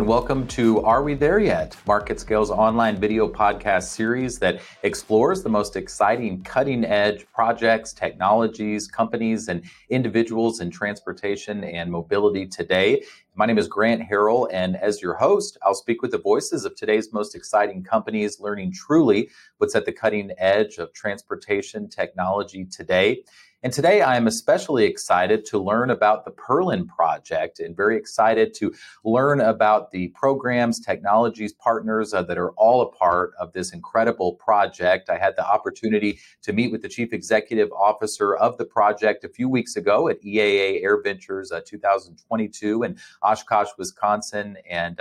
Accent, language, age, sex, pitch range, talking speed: American, English, 40-59, male, 105-130 Hz, 160 wpm